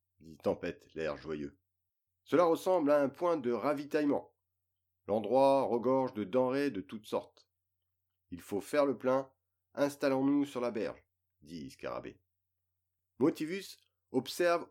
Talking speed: 125 wpm